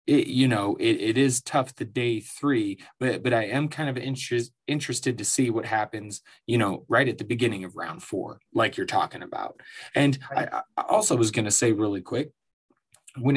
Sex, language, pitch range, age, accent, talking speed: male, English, 115-165 Hz, 20-39, American, 205 wpm